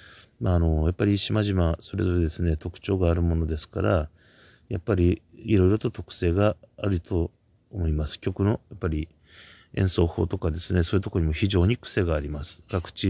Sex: male